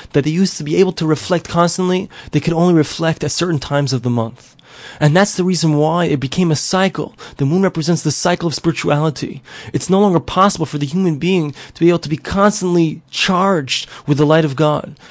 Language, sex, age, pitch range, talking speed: English, male, 30-49, 150-190 Hz, 220 wpm